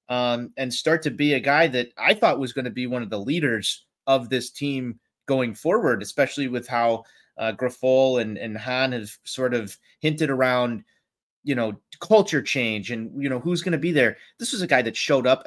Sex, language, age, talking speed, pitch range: male, English, 30-49, 215 wpm, 120-150 Hz